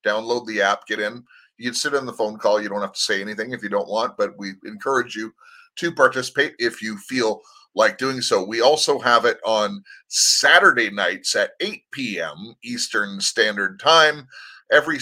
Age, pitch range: 30-49, 100-145 Hz